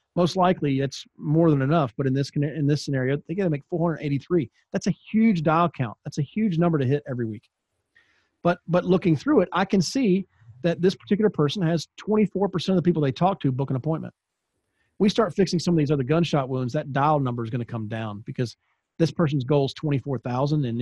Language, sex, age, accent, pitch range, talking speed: English, male, 40-59, American, 135-170 Hz, 220 wpm